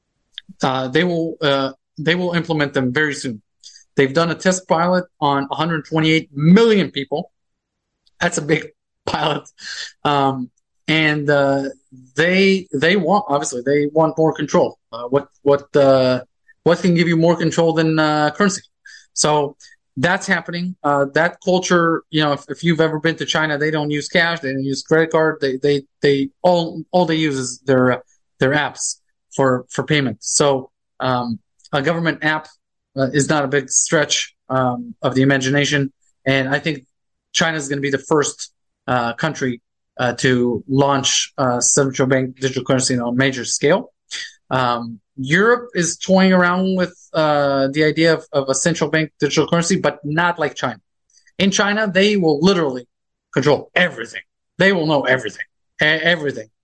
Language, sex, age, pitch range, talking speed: English, male, 30-49, 135-170 Hz, 165 wpm